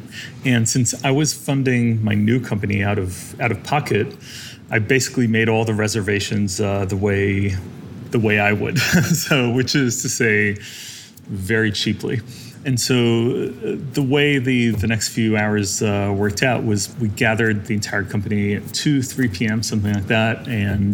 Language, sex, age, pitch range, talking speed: English, male, 30-49, 105-120 Hz, 170 wpm